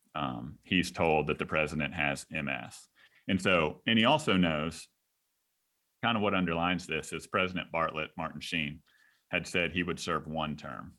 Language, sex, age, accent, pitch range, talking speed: English, male, 30-49, American, 75-90 Hz, 170 wpm